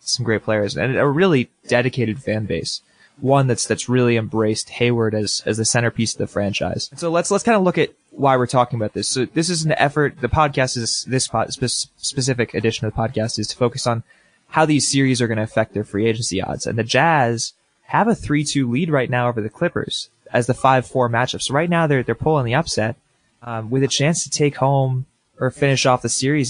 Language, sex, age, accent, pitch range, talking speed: English, male, 20-39, American, 115-140 Hz, 225 wpm